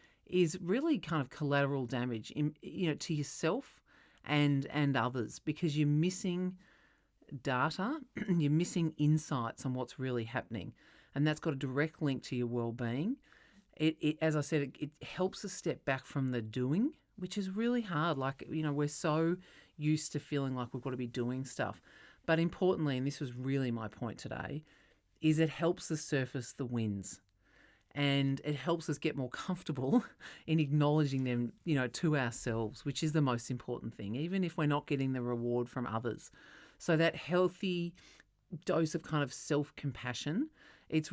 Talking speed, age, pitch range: 180 wpm, 40-59, 125-160 Hz